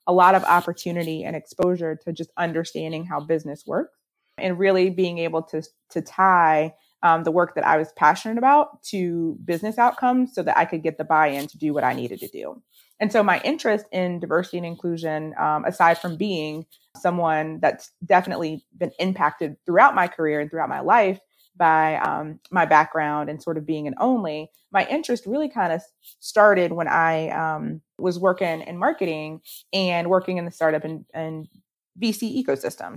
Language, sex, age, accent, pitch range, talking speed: English, female, 20-39, American, 155-185 Hz, 180 wpm